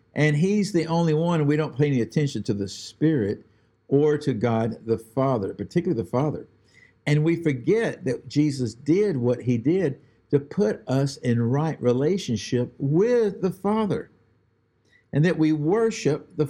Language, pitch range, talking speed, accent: English, 110-150 Hz, 165 wpm, American